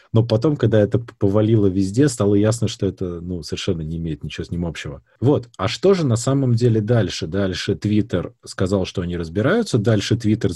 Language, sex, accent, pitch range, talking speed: Russian, male, native, 95-125 Hz, 195 wpm